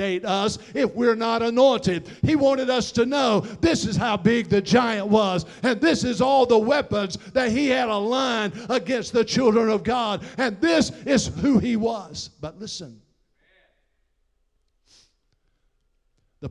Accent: American